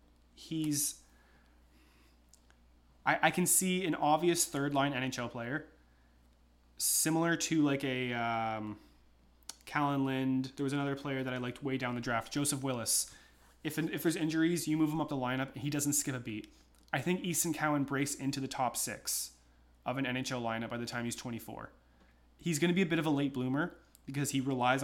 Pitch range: 105-145 Hz